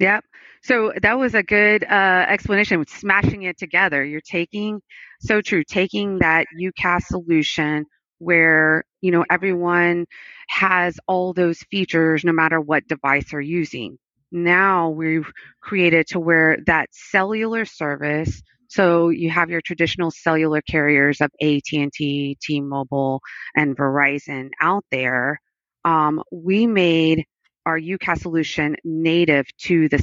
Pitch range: 150-185 Hz